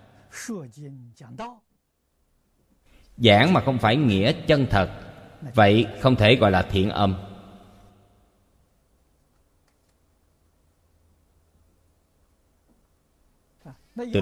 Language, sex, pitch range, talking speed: Vietnamese, male, 85-125 Hz, 65 wpm